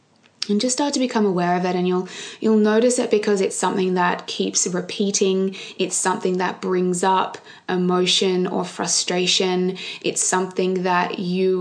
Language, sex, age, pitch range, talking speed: English, female, 20-39, 180-215 Hz, 160 wpm